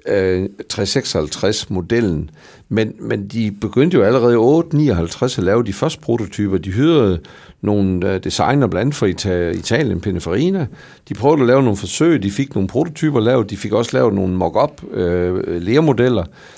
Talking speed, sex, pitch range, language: 150 wpm, male, 100-135 Hz, Danish